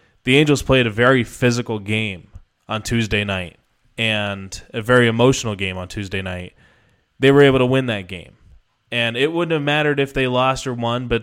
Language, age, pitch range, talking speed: English, 20-39, 110-125 Hz, 190 wpm